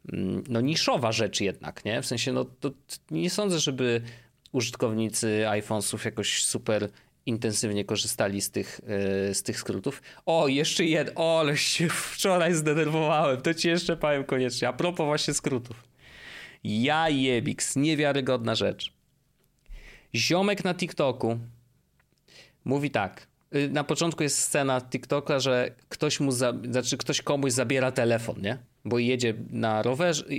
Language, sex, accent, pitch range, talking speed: Polish, male, native, 115-150 Hz, 130 wpm